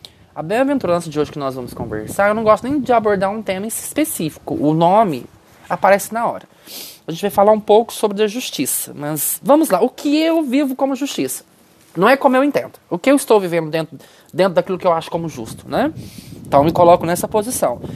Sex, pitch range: male, 180-250 Hz